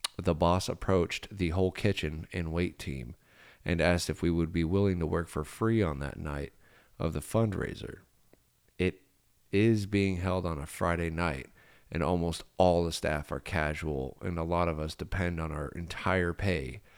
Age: 40-59